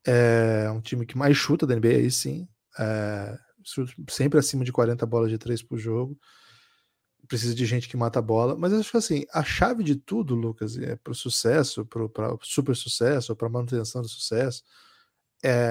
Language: Portuguese